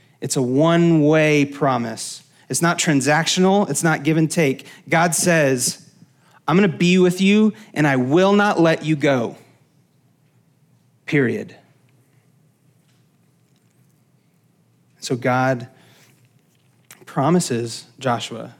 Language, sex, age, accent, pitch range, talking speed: English, male, 30-49, American, 130-155 Hz, 100 wpm